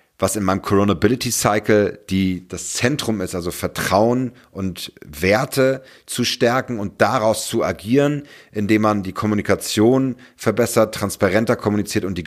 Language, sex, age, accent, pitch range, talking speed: German, male, 40-59, German, 80-105 Hz, 130 wpm